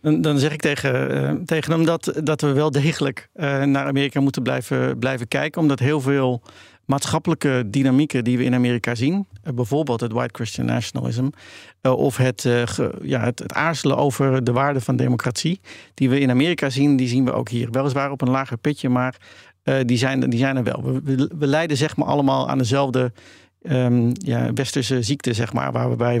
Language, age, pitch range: Dutch, 50-69, 125-140 Hz